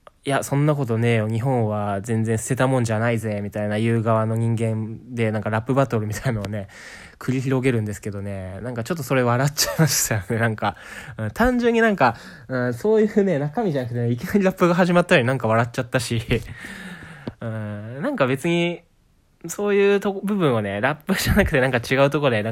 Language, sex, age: Japanese, male, 20-39